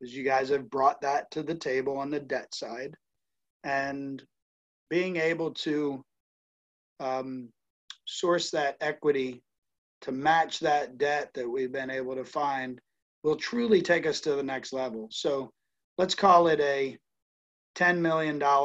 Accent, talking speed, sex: American, 145 wpm, male